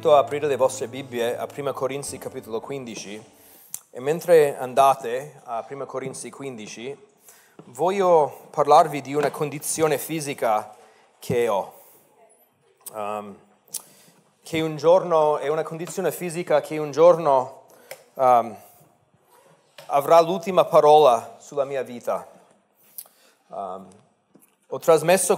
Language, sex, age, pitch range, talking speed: Italian, male, 30-49, 135-175 Hz, 110 wpm